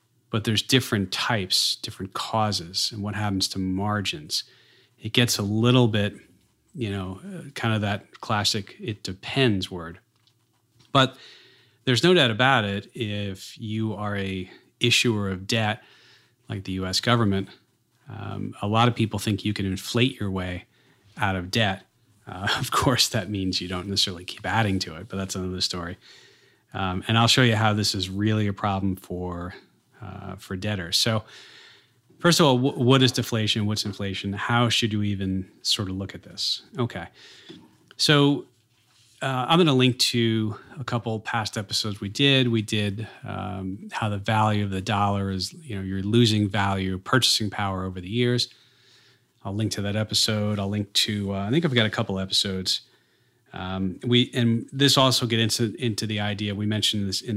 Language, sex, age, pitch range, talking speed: English, male, 30-49, 95-120 Hz, 175 wpm